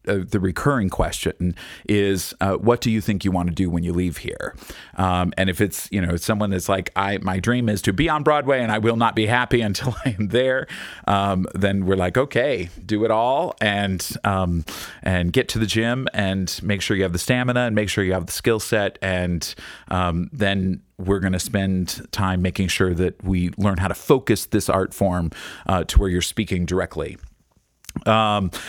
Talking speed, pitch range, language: 205 wpm, 95-110 Hz, English